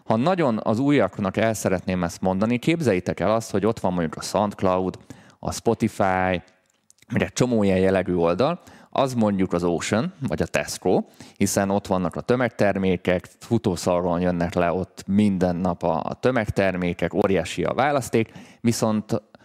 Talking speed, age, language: 145 wpm, 20-39, Hungarian